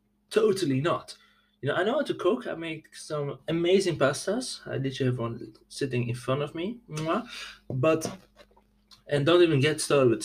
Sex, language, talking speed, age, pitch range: male, English, 175 wpm, 20-39, 120-175 Hz